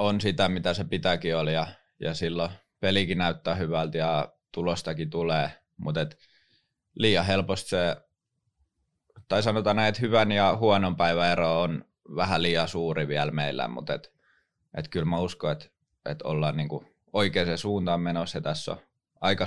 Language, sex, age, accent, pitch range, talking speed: English, male, 20-39, Finnish, 80-95 Hz, 150 wpm